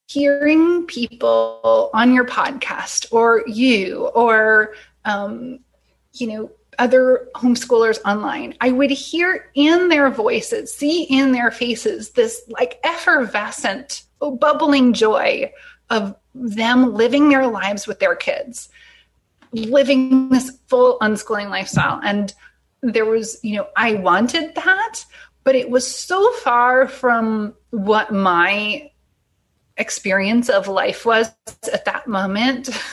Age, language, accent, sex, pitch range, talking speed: 30-49, English, American, female, 210-285 Hz, 120 wpm